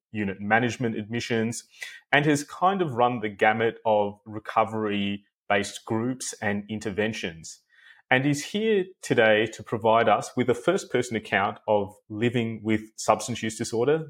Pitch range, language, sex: 110-140 Hz, English, male